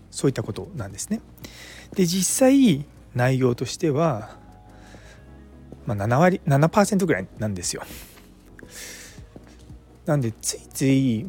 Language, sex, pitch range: Japanese, male, 90-145 Hz